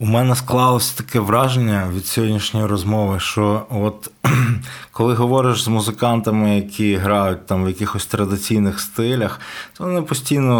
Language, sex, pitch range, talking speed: Ukrainian, male, 100-120 Hz, 135 wpm